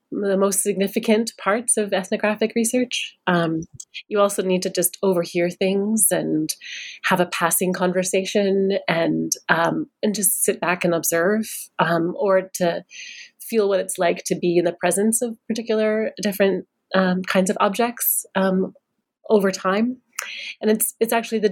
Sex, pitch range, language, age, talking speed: female, 175-210 Hz, English, 30-49, 155 wpm